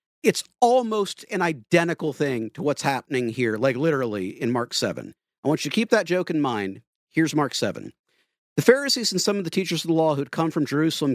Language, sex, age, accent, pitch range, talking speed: English, male, 50-69, American, 135-180 Hz, 220 wpm